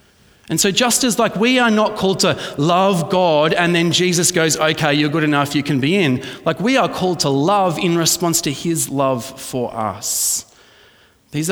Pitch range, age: 125-175 Hz, 30-49